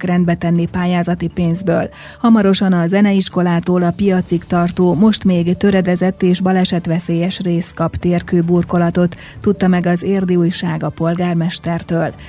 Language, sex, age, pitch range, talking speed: Hungarian, female, 30-49, 170-195 Hz, 115 wpm